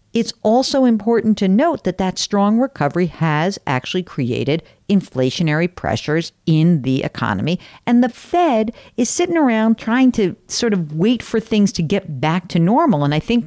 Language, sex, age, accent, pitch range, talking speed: English, female, 50-69, American, 150-220 Hz, 170 wpm